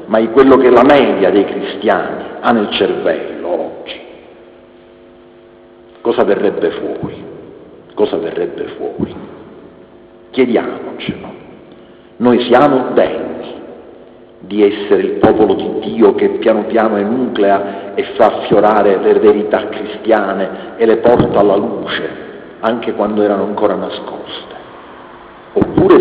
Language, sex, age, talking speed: Italian, male, 50-69, 115 wpm